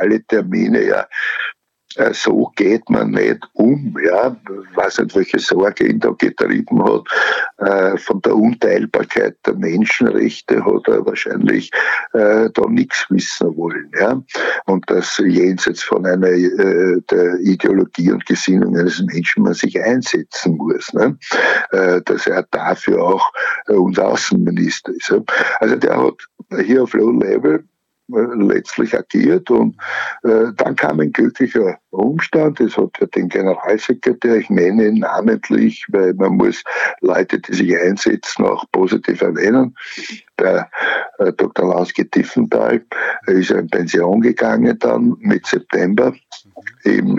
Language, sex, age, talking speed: German, male, 60-79, 130 wpm